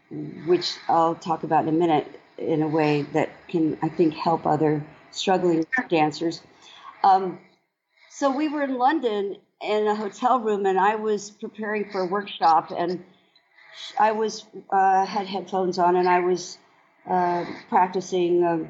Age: 50-69